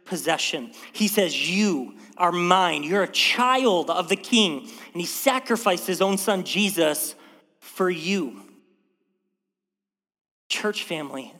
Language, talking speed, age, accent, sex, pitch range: English, 120 wpm, 30-49, American, male, 165-210 Hz